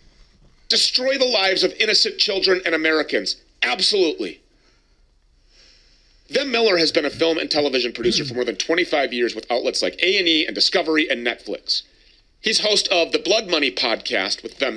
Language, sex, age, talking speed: English, male, 40-59, 170 wpm